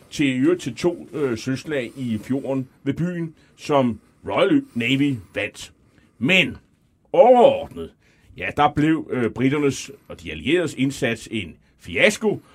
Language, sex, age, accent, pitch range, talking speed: Danish, male, 30-49, native, 125-195 Hz, 120 wpm